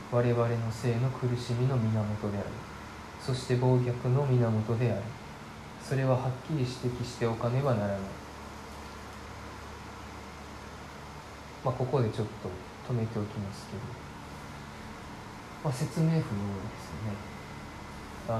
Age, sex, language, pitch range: 20-39, male, Japanese, 95-125 Hz